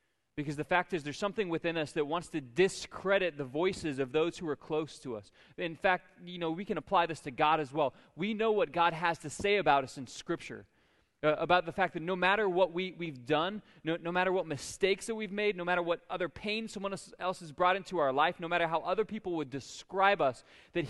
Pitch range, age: 165-210 Hz, 20-39